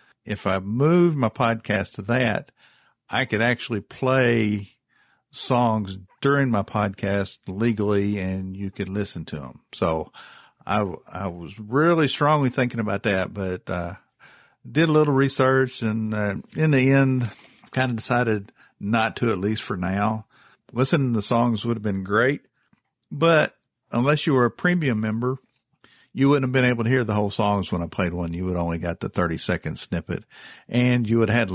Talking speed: 180 wpm